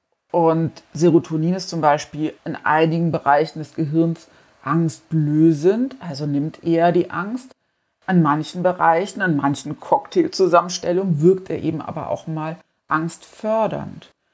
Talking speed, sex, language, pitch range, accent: 120 wpm, female, German, 160-185 Hz, German